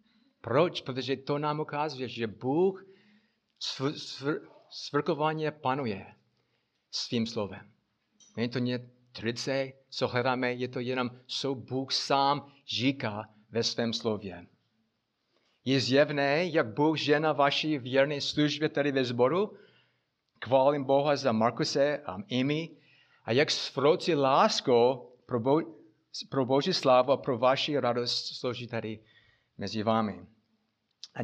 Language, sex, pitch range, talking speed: Czech, male, 115-145 Hz, 125 wpm